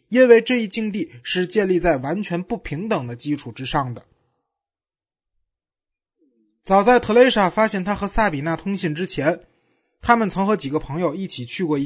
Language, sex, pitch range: Chinese, male, 145-210 Hz